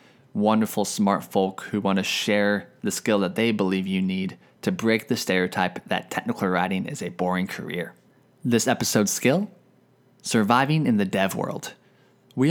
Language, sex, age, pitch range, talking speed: English, male, 20-39, 105-150 Hz, 165 wpm